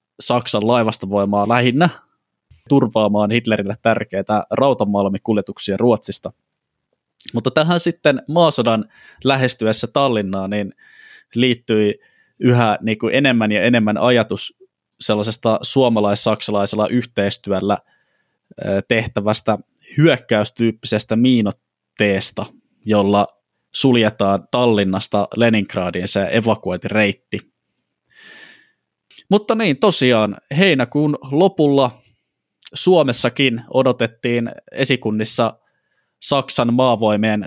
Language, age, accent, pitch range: Finnish, 20-39, native, 105-125 Hz